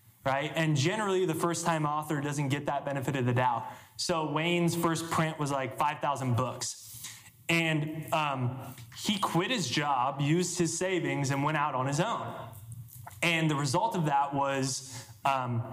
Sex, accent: male, American